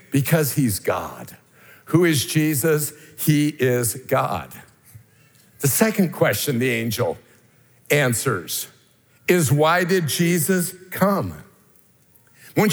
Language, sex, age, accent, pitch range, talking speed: English, male, 50-69, American, 165-220 Hz, 100 wpm